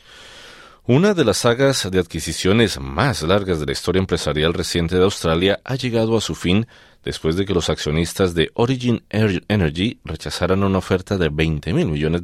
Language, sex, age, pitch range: Spanish, male, 40-59, 75-100 Hz